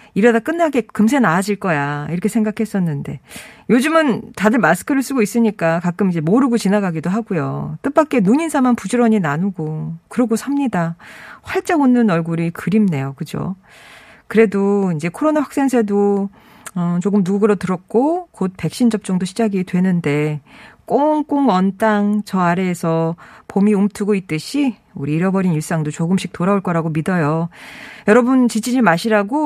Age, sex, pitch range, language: 40-59, female, 175-245 Hz, Korean